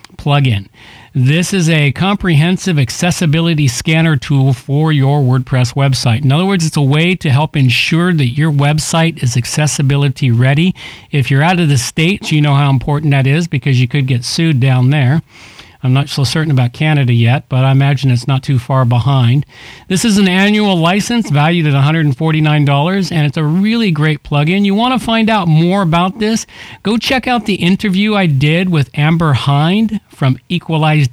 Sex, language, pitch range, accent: male, English, 135-180 Hz, American